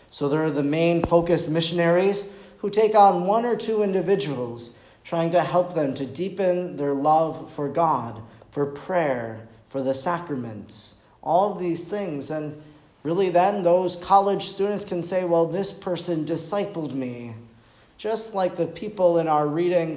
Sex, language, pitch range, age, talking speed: male, English, 145-185 Hz, 40-59, 160 wpm